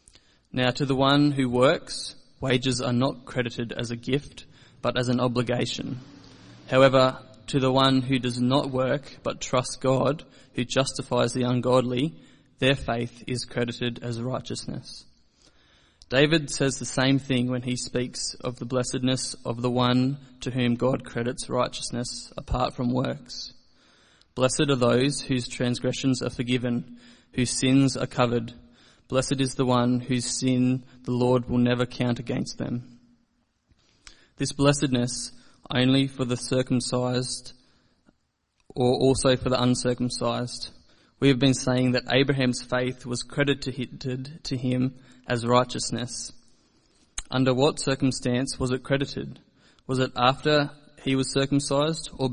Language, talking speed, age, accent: English, 140 wpm, 20-39, Australian